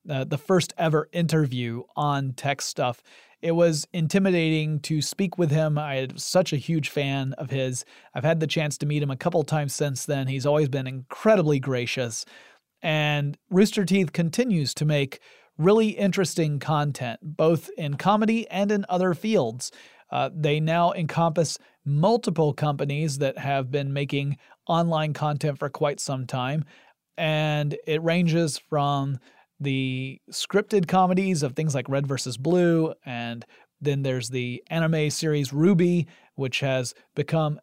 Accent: American